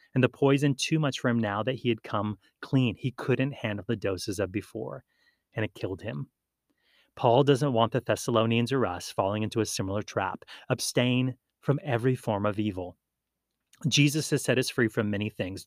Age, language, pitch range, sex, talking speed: 30-49, English, 110-140 Hz, male, 190 wpm